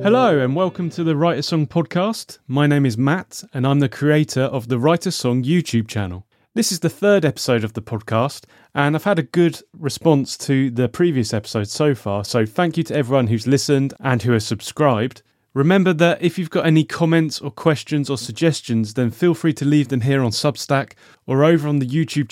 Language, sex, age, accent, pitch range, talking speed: English, male, 30-49, British, 115-155 Hz, 210 wpm